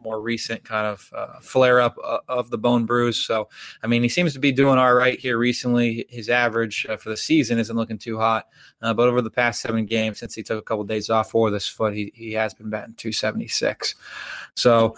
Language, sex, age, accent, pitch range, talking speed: English, male, 20-39, American, 110-125 Hz, 230 wpm